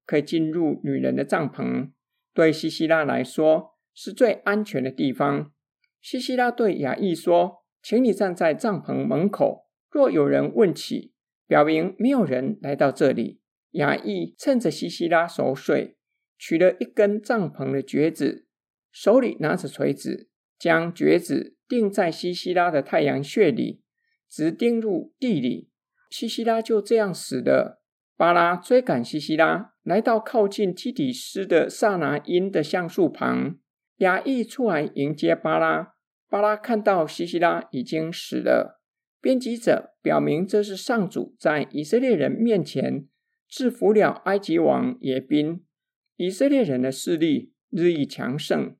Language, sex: Chinese, male